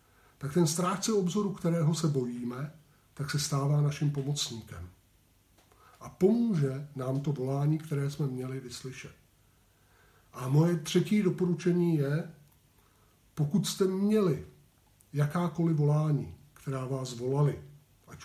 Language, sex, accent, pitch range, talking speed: Czech, male, native, 120-155 Hz, 115 wpm